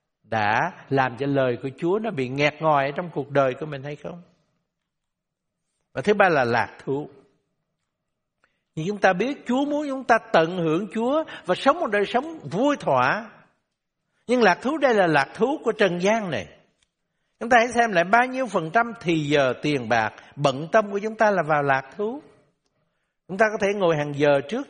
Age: 60-79